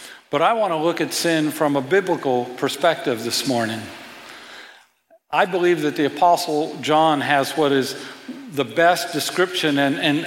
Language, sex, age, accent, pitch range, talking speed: English, male, 50-69, American, 135-165 Hz, 160 wpm